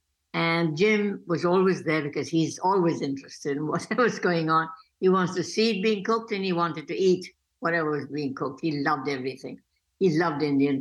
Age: 60-79